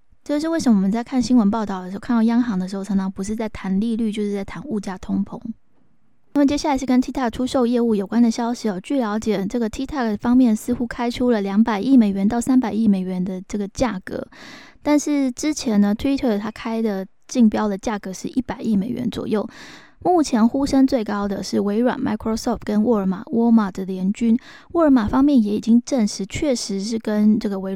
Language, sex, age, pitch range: Chinese, female, 20-39, 205-255 Hz